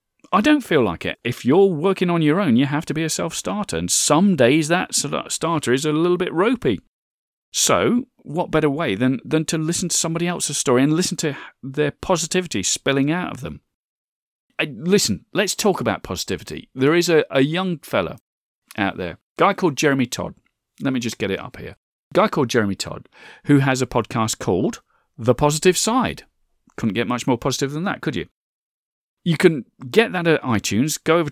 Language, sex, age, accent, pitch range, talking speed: English, male, 40-59, British, 105-160 Hz, 200 wpm